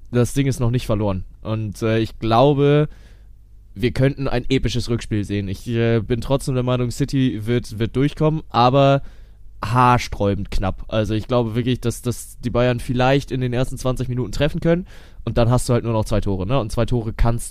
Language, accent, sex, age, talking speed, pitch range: German, German, male, 20-39, 200 wpm, 105-125 Hz